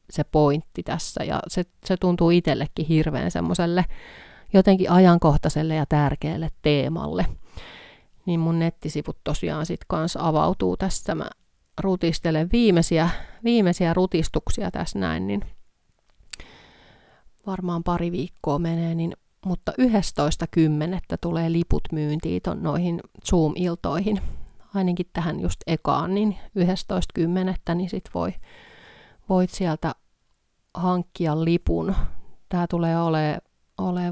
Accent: native